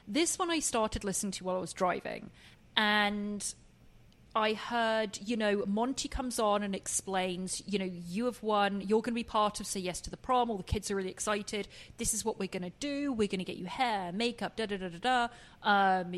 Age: 30-49